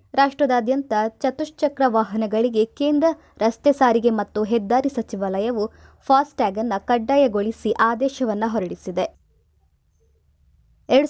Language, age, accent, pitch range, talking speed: Kannada, 20-39, native, 205-270 Hz, 80 wpm